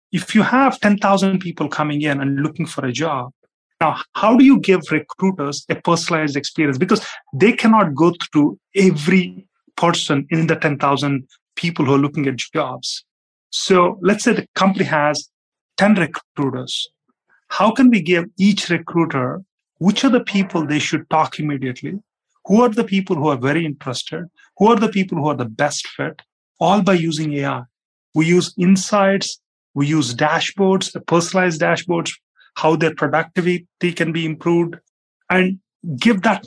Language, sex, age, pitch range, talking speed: English, male, 30-49, 150-190 Hz, 160 wpm